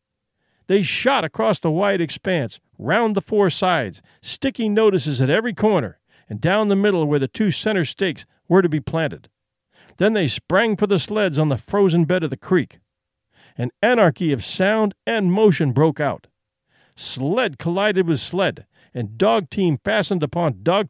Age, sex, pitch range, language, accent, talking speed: 50-69, male, 140-200 Hz, English, American, 170 wpm